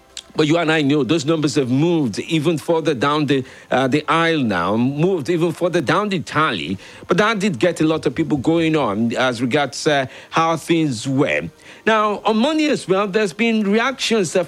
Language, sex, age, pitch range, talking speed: English, male, 50-69, 150-195 Hz, 200 wpm